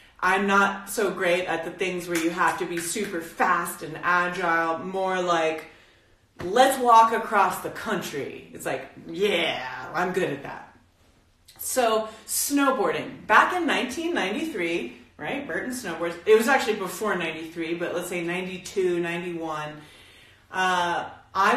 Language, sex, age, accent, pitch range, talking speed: English, female, 30-49, American, 170-230 Hz, 140 wpm